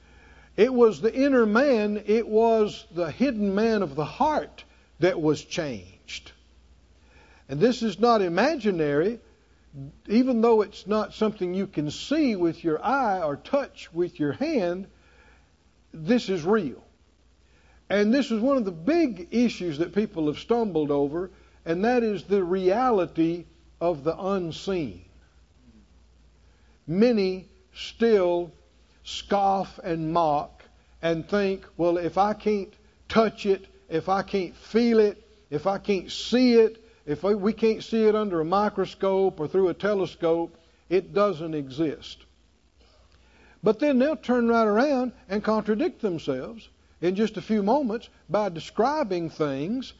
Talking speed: 140 wpm